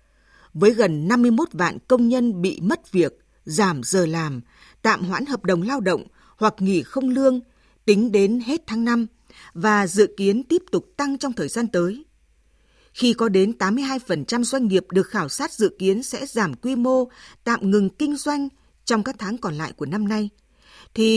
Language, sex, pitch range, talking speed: Vietnamese, female, 175-240 Hz, 185 wpm